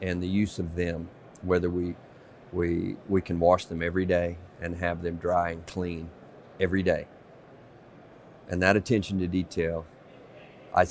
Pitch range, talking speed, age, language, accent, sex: 85-95 Hz, 155 wpm, 50-69, English, American, male